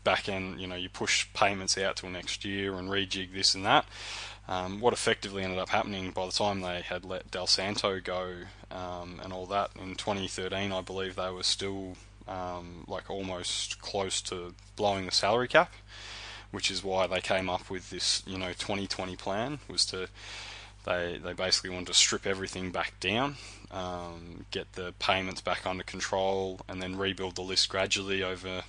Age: 20-39